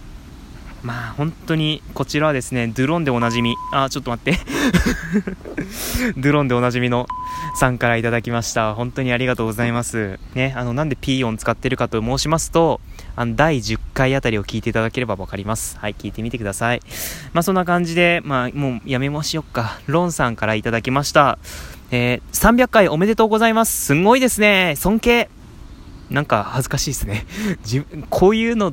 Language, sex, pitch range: Japanese, male, 115-175 Hz